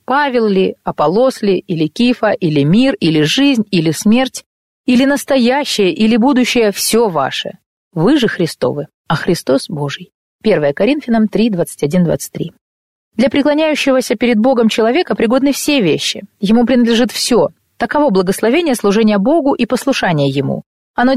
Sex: female